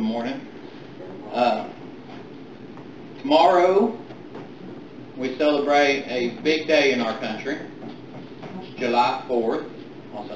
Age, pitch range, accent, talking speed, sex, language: 40-59, 120-150 Hz, American, 80 wpm, male, English